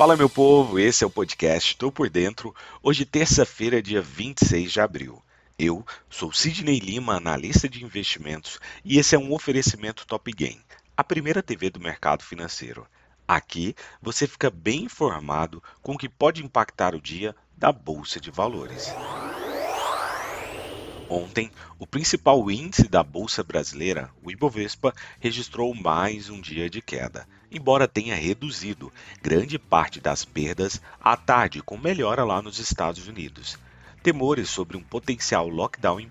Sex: male